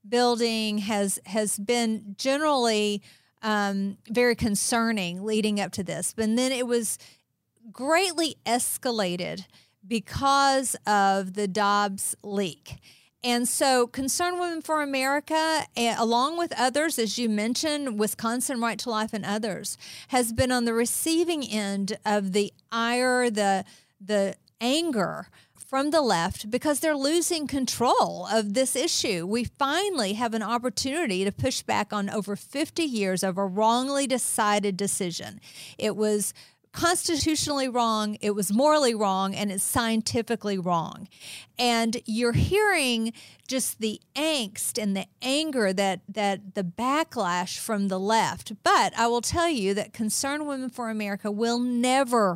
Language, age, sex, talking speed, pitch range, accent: English, 40-59, female, 140 wpm, 205-265 Hz, American